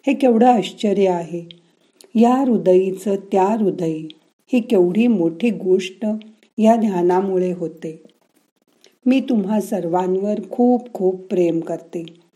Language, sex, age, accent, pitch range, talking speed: Marathi, female, 50-69, native, 170-220 Hz, 105 wpm